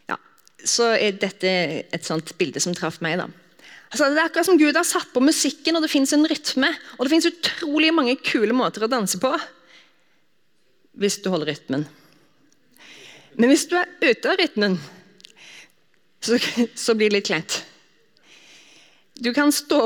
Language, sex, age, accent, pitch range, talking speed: English, female, 30-49, Swedish, 200-295 Hz, 165 wpm